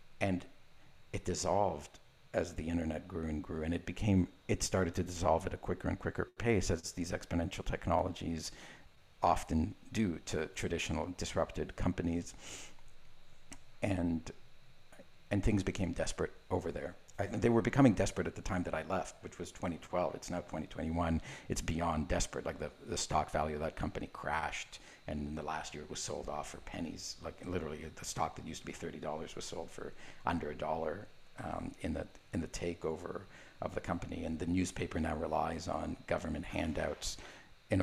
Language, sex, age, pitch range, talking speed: English, male, 50-69, 80-95 Hz, 180 wpm